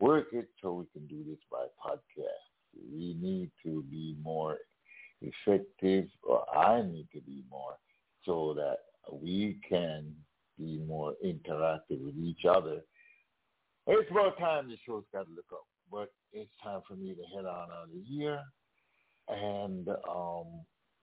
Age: 60-79